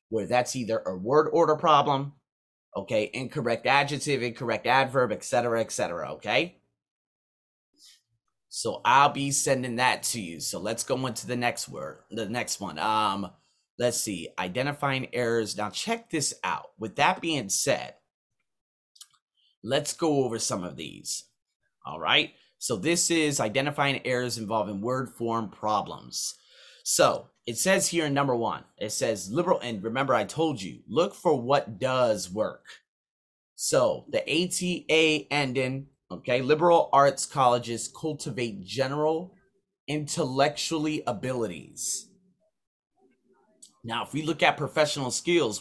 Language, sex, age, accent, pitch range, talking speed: English, male, 30-49, American, 115-155 Hz, 135 wpm